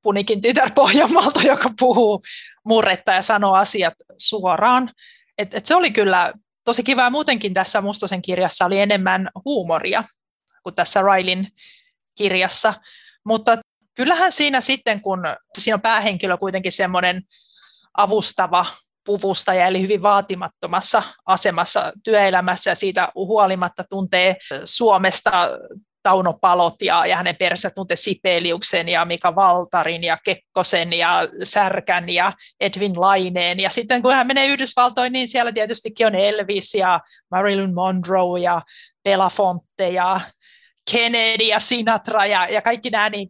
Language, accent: Finnish, native